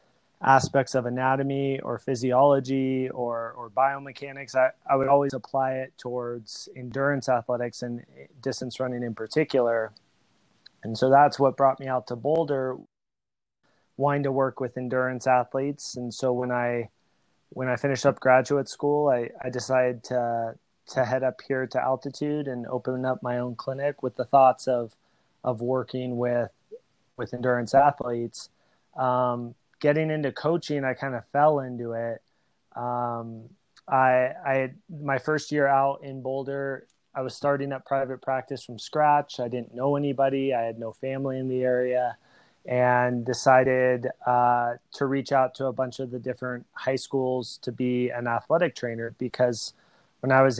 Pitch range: 125-135 Hz